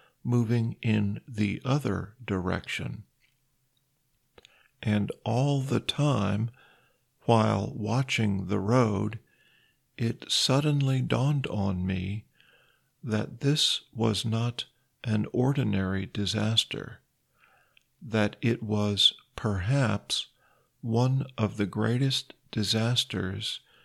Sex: male